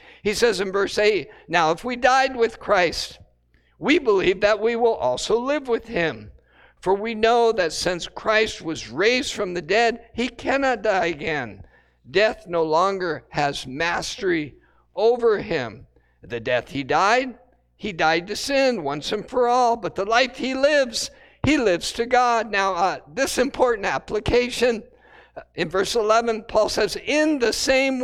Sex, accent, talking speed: male, American, 165 wpm